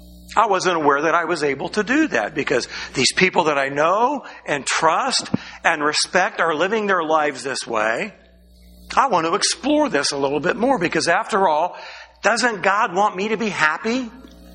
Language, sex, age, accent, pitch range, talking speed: English, male, 50-69, American, 155-215 Hz, 185 wpm